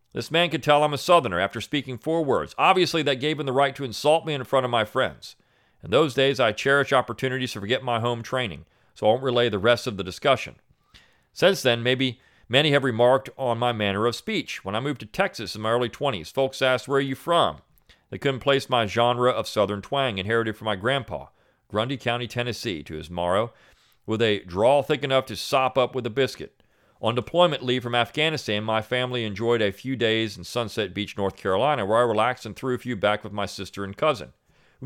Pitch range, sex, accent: 110-135 Hz, male, American